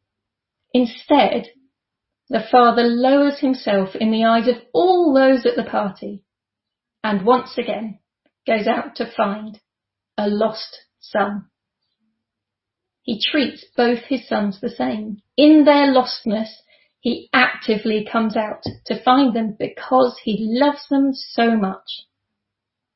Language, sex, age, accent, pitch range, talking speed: English, female, 40-59, British, 220-275 Hz, 125 wpm